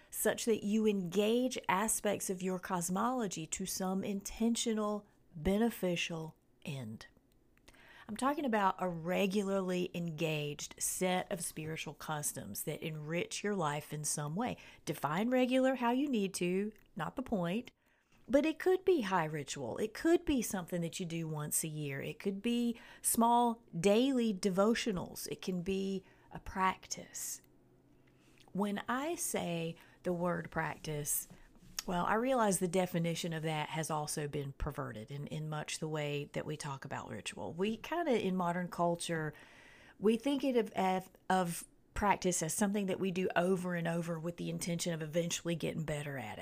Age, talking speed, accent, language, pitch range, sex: 30-49, 160 wpm, American, English, 160-215 Hz, female